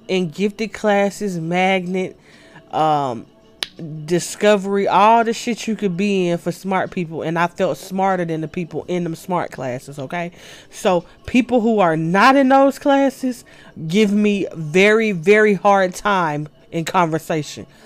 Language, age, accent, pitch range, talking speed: English, 20-39, American, 160-200 Hz, 150 wpm